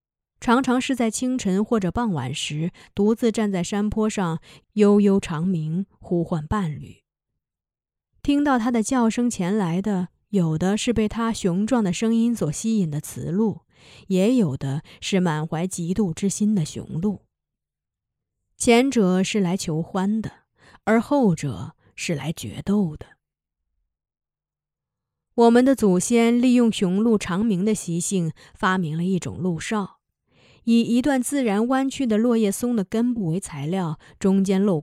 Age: 20-39